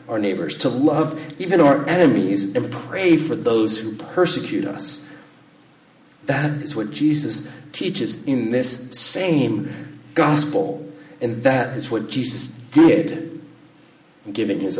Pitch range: 105-150 Hz